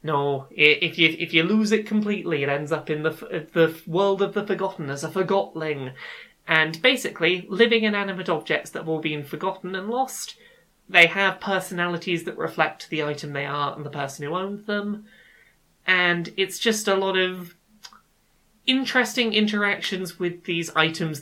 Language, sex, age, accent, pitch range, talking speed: English, male, 30-49, British, 155-205 Hz, 175 wpm